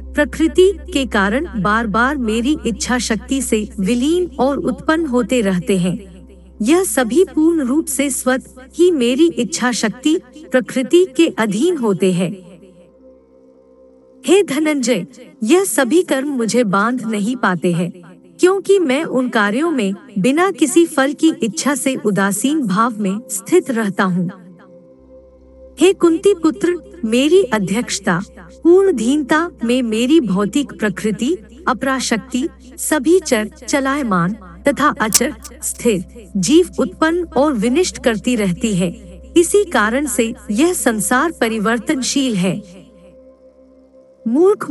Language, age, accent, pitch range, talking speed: Hindi, 50-69, native, 210-300 Hz, 120 wpm